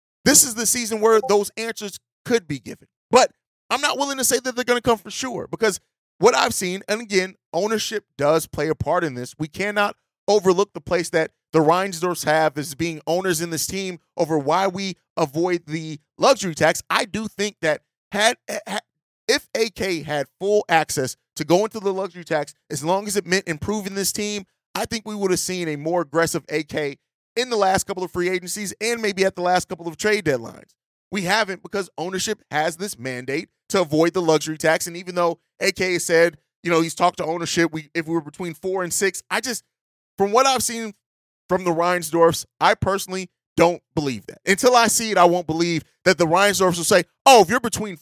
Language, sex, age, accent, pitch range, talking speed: English, male, 30-49, American, 165-210 Hz, 215 wpm